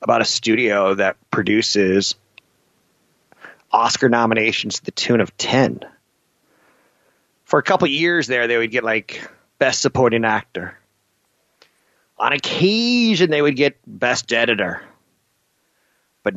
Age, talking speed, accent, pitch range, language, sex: 30-49, 120 wpm, American, 105-130 Hz, English, male